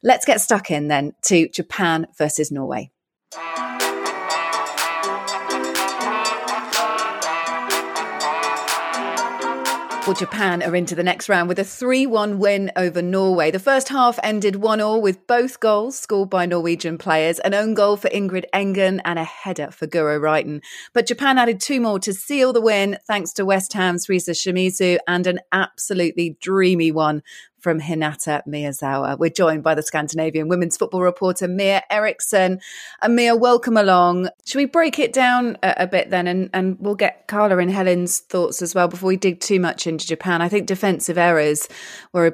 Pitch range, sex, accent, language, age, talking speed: 160-200 Hz, female, British, English, 30-49, 165 wpm